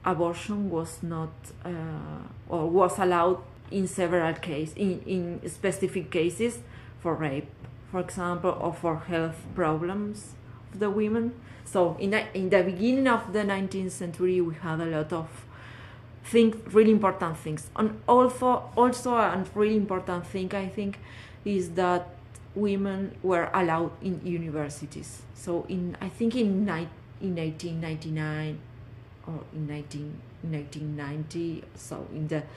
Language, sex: English, female